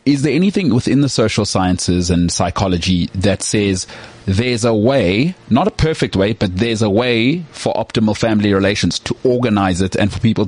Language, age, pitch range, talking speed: English, 30-49, 100-135 Hz, 185 wpm